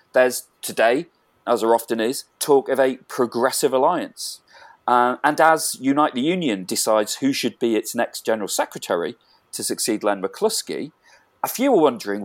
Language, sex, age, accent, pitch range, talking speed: English, male, 40-59, British, 110-155 Hz, 160 wpm